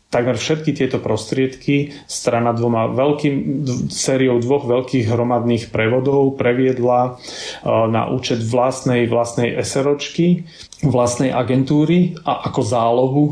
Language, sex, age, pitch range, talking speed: Slovak, male, 30-49, 115-135 Hz, 100 wpm